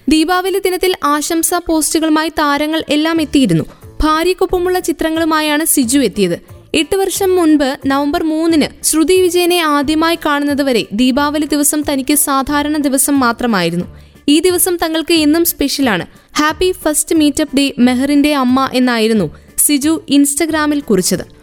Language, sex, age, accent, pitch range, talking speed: Malayalam, female, 20-39, native, 275-340 Hz, 115 wpm